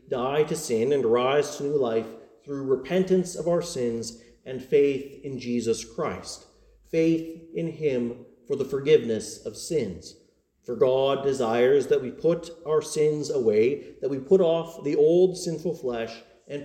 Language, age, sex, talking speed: English, 40-59, male, 160 wpm